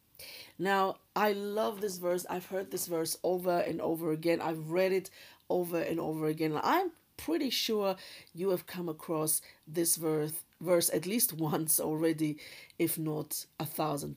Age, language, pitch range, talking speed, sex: 50-69, English, 165-195 Hz, 160 wpm, female